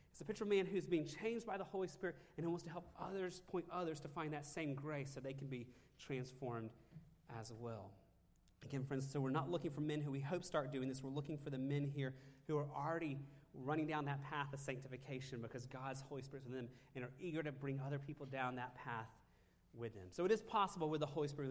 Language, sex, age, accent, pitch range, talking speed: English, male, 30-49, American, 130-170 Hz, 250 wpm